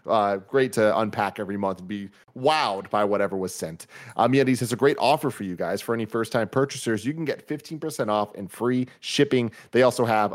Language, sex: English, male